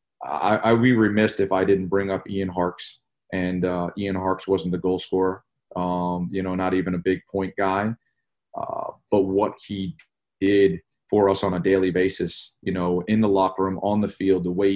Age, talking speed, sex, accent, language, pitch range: 30-49, 205 wpm, male, American, English, 90-100 Hz